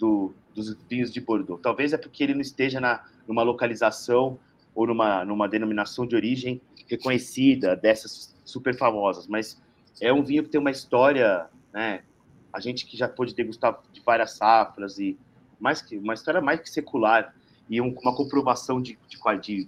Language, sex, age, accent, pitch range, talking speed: Portuguese, male, 30-49, Brazilian, 115-145 Hz, 175 wpm